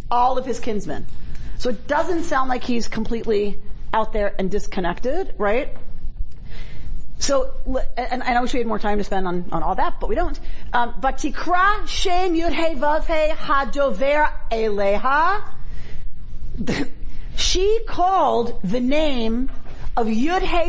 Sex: female